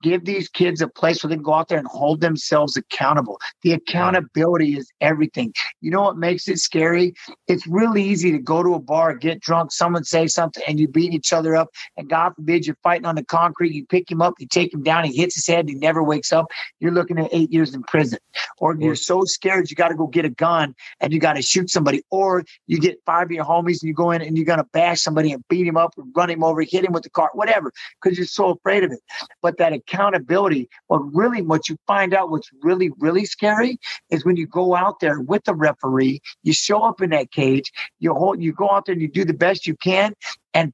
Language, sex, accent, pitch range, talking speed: English, male, American, 155-180 Hz, 250 wpm